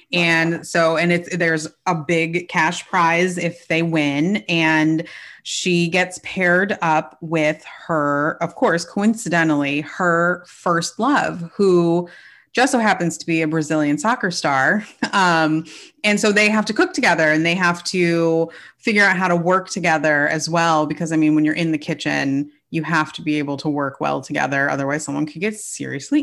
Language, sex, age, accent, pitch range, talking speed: English, female, 30-49, American, 155-185 Hz, 175 wpm